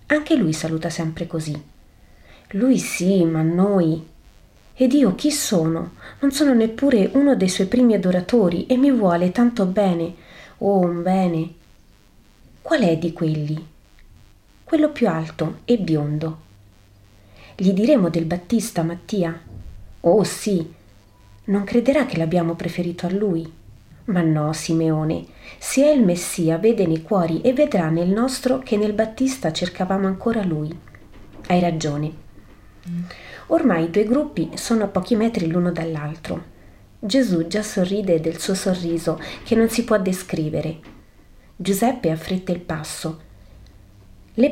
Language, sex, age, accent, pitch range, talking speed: Italian, female, 30-49, native, 155-215 Hz, 135 wpm